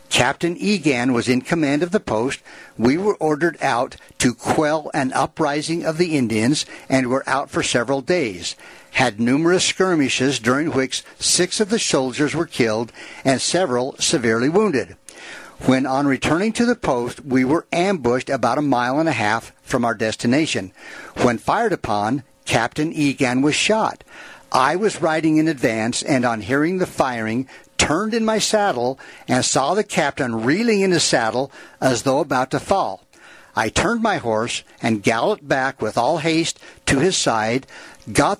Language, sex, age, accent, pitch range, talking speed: English, male, 60-79, American, 125-175 Hz, 165 wpm